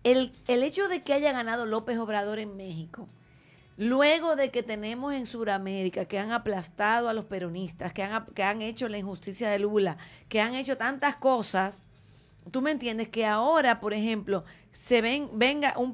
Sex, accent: female, American